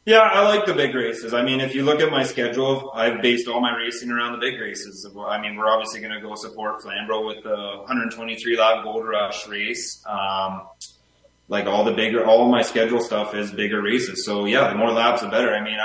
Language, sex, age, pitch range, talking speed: English, male, 20-39, 110-120 Hz, 240 wpm